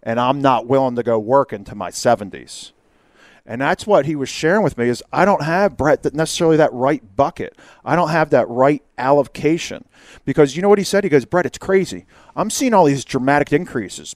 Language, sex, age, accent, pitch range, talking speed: English, male, 40-59, American, 125-175 Hz, 210 wpm